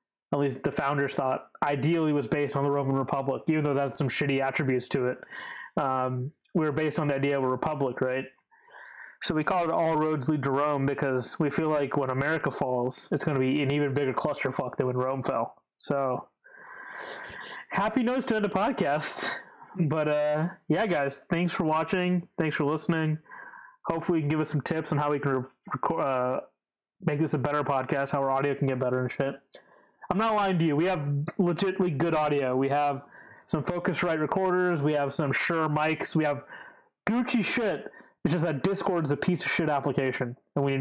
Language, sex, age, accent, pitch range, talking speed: English, male, 20-39, American, 140-175 Hz, 205 wpm